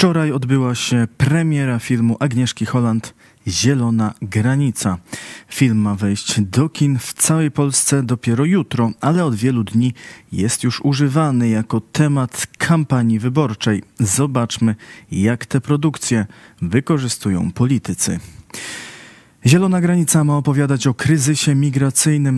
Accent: native